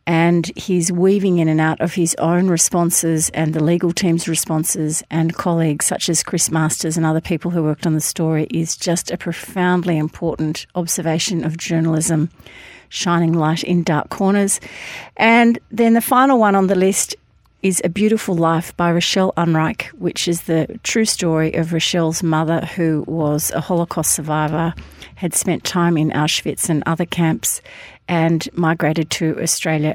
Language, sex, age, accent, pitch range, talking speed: English, female, 40-59, Australian, 160-185 Hz, 165 wpm